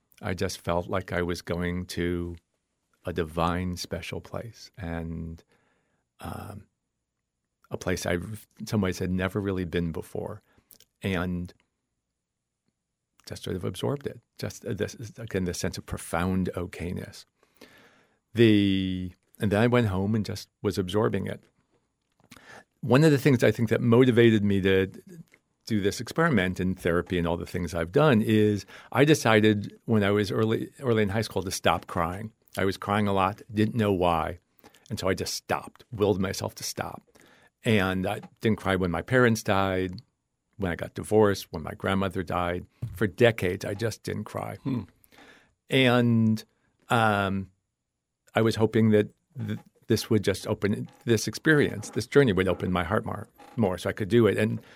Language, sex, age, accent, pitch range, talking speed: English, male, 50-69, American, 90-110 Hz, 170 wpm